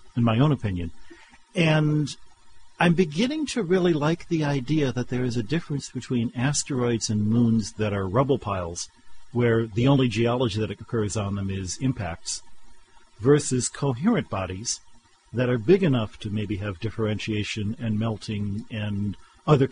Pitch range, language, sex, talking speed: 100-135 Hz, English, male, 150 wpm